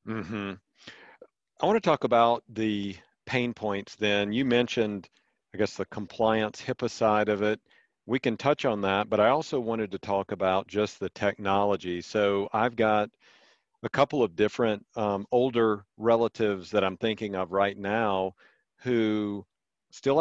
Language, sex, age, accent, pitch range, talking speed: English, male, 50-69, American, 105-125 Hz, 155 wpm